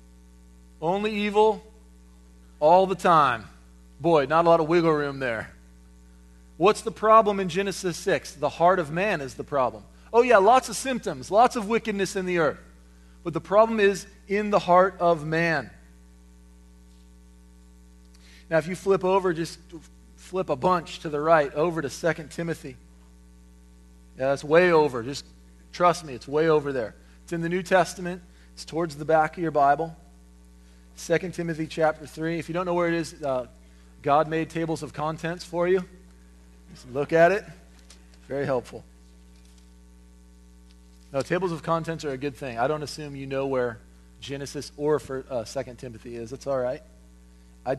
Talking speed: 170 wpm